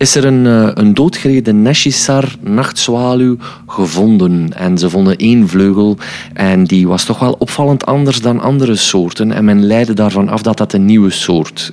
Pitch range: 95-125 Hz